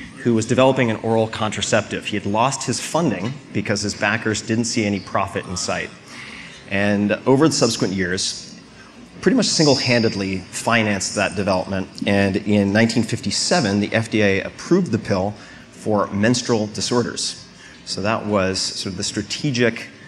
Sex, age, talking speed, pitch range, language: male, 30-49, 145 wpm, 100-115 Hz, English